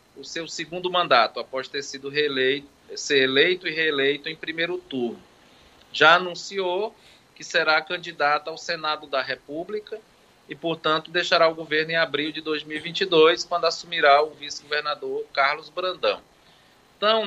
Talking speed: 140 wpm